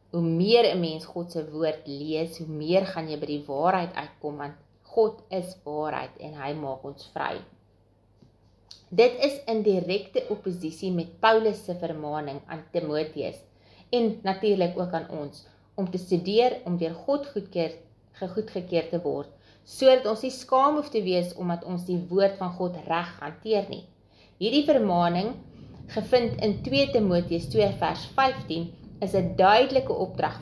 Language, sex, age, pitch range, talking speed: English, female, 30-49, 160-215 Hz, 150 wpm